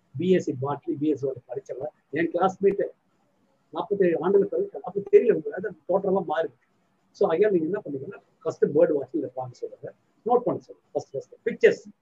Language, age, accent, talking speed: Tamil, 50-69, native, 160 wpm